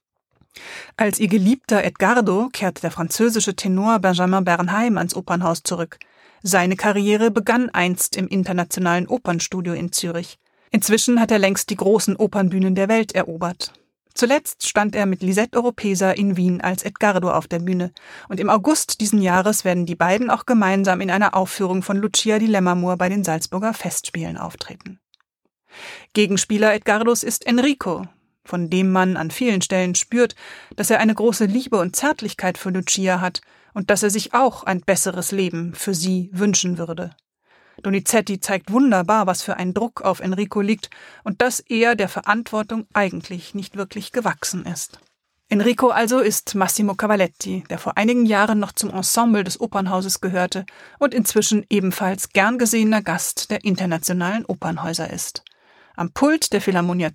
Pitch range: 180-220 Hz